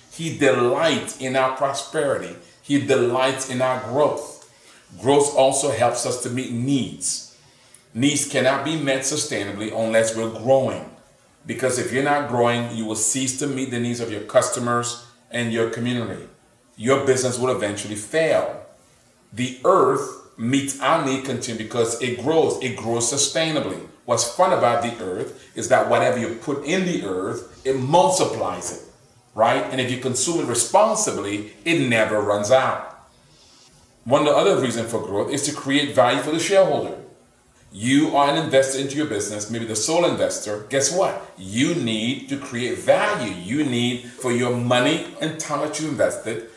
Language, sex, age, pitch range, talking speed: English, male, 40-59, 115-140 Hz, 165 wpm